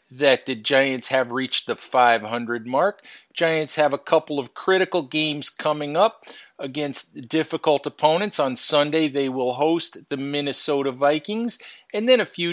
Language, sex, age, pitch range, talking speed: English, male, 40-59, 135-165 Hz, 155 wpm